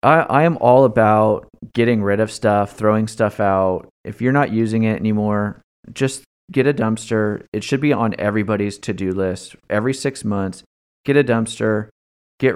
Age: 30-49